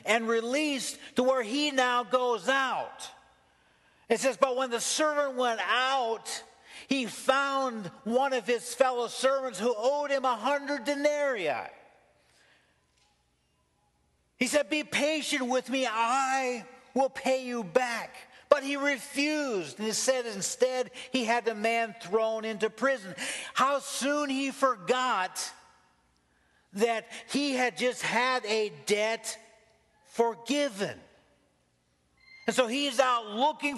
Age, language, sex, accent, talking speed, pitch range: 50-69, English, male, American, 125 wpm, 220-270 Hz